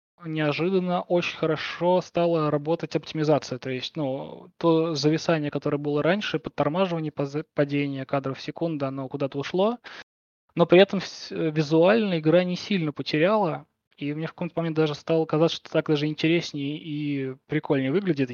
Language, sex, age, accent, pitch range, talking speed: Russian, male, 20-39, native, 145-170 Hz, 150 wpm